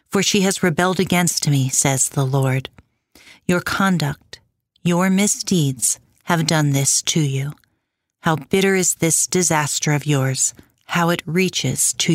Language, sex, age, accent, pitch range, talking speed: English, female, 40-59, American, 145-200 Hz, 145 wpm